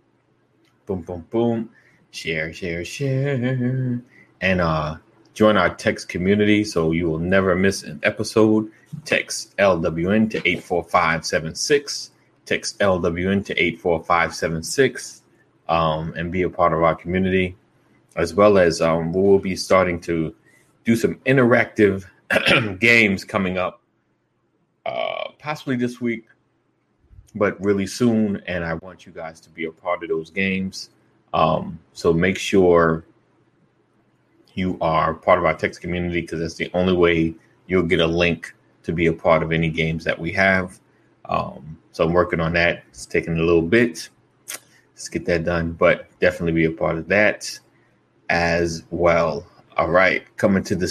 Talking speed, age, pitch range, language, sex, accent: 150 wpm, 30-49, 85-105 Hz, English, male, American